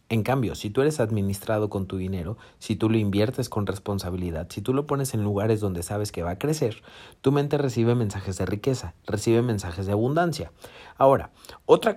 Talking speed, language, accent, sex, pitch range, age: 195 wpm, Spanish, Mexican, male, 100-130 Hz, 40-59